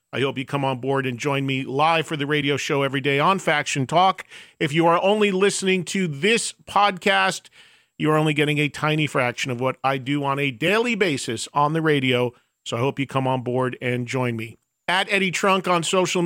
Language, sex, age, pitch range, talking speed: English, male, 40-59, 140-185 Hz, 220 wpm